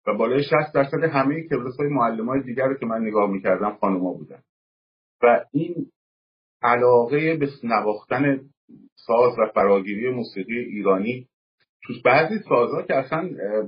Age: 50-69